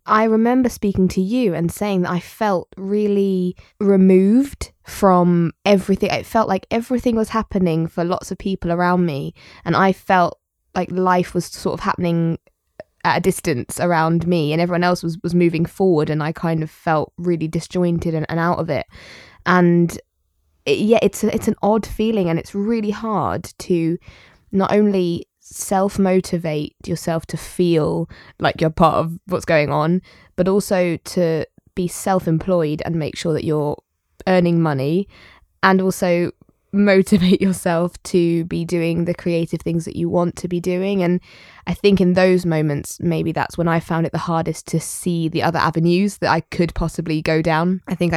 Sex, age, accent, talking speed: female, 20-39, British, 175 wpm